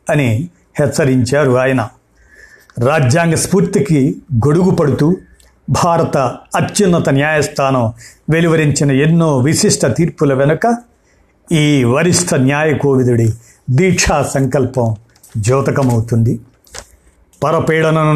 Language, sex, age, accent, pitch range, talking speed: Telugu, male, 50-69, native, 130-170 Hz, 75 wpm